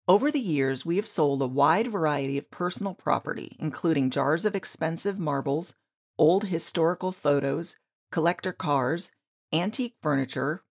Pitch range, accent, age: 145-190 Hz, American, 40-59